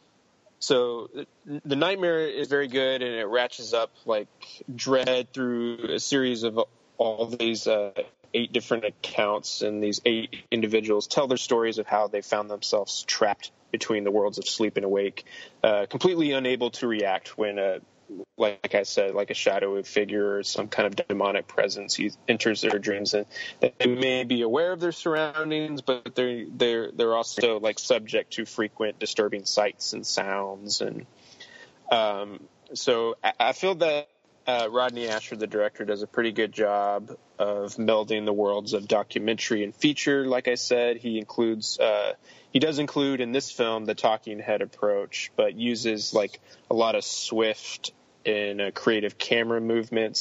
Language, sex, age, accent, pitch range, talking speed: English, male, 20-39, American, 105-130 Hz, 165 wpm